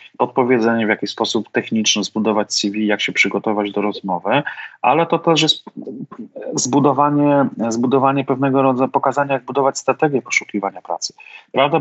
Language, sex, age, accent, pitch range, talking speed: Polish, male, 30-49, native, 110-140 Hz, 135 wpm